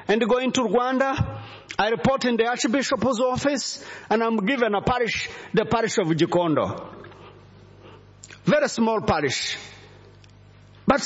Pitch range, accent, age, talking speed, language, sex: 195-290 Hz, South African, 40-59, 125 wpm, English, male